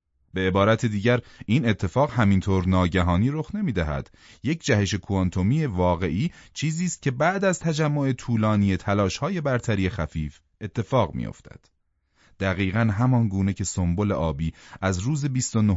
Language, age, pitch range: Persian, 30-49, 95-125 Hz